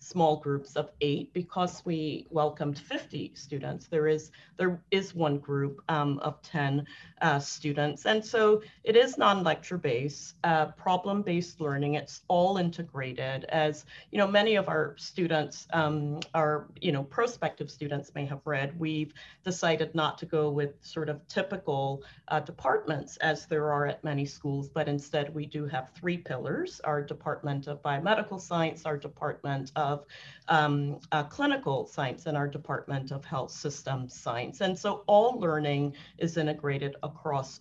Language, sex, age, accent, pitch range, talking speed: English, female, 40-59, American, 145-165 Hz, 160 wpm